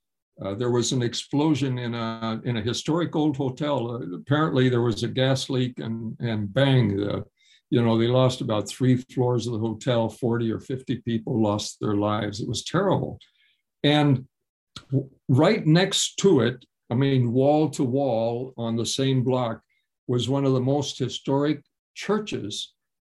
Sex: male